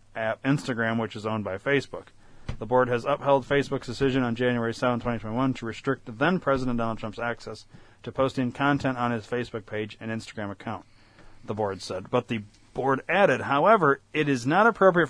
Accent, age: American, 30-49